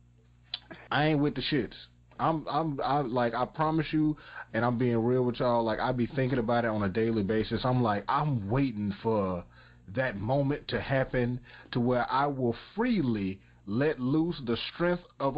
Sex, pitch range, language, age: male, 100-130 Hz, English, 30-49